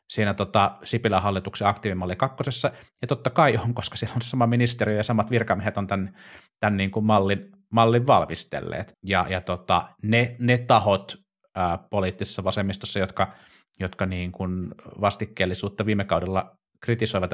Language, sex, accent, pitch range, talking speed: Finnish, male, native, 90-110 Hz, 150 wpm